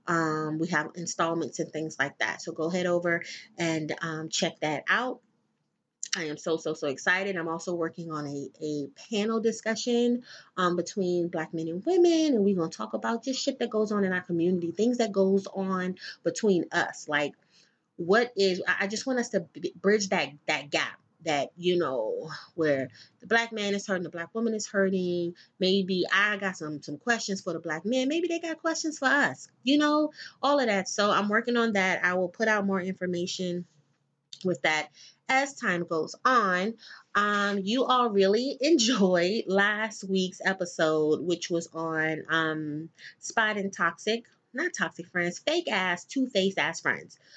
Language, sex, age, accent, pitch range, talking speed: English, female, 30-49, American, 165-215 Hz, 180 wpm